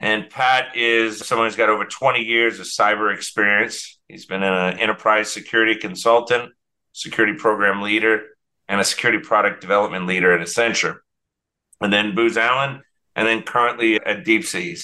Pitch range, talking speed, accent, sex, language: 100-120 Hz, 160 wpm, American, male, English